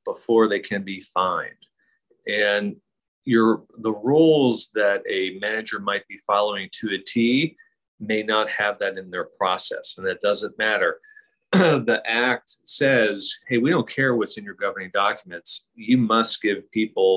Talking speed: 155 wpm